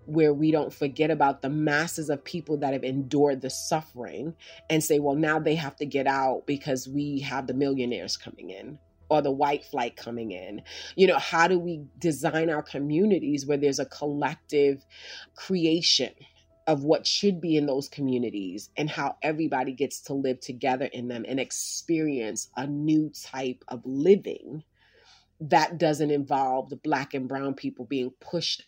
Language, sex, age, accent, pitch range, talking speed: English, female, 30-49, American, 140-175 Hz, 170 wpm